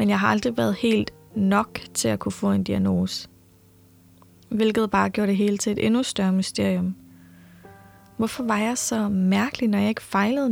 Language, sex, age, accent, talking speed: Danish, female, 20-39, native, 185 wpm